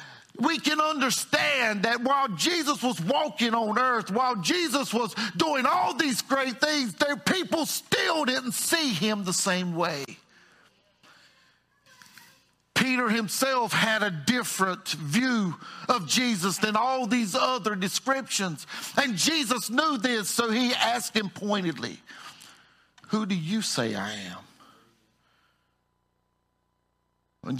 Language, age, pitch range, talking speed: English, 50-69, 185-270 Hz, 120 wpm